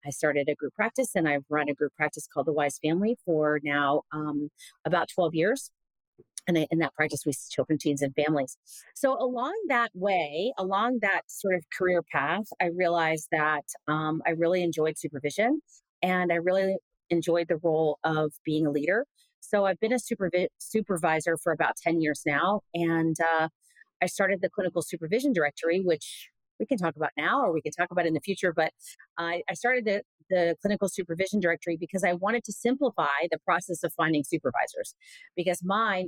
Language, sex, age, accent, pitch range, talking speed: English, female, 40-59, American, 155-200 Hz, 190 wpm